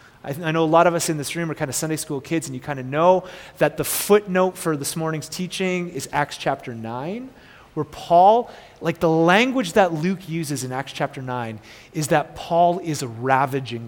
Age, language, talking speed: 30-49, English, 210 wpm